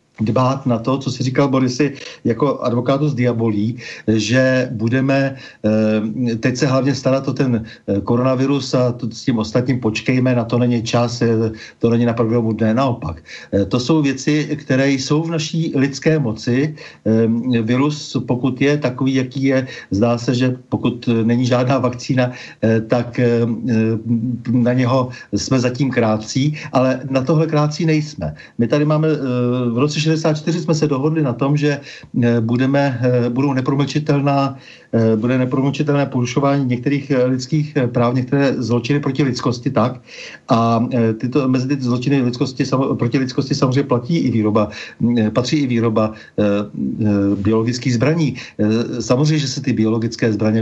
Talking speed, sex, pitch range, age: 140 wpm, male, 115-140 Hz, 50-69